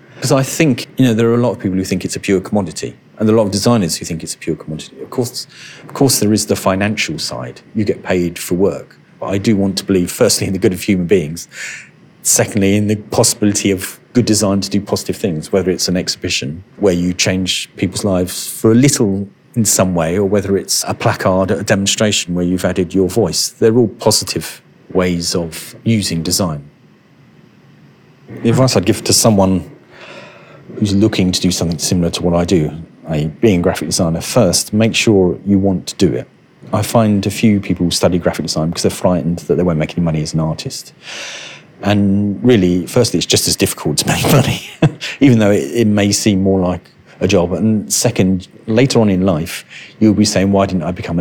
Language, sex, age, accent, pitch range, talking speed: English, male, 40-59, British, 90-110 Hz, 215 wpm